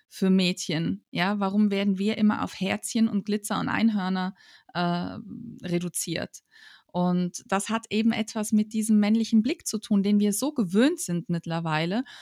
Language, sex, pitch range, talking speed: German, female, 185-225 Hz, 155 wpm